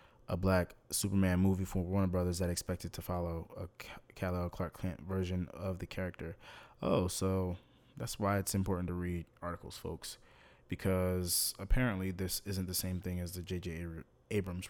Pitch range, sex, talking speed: 90-100 Hz, male, 165 wpm